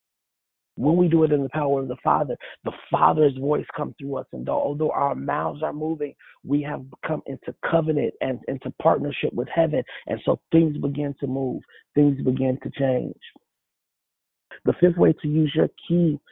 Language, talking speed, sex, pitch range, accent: English, 180 wpm, male, 140-160 Hz, American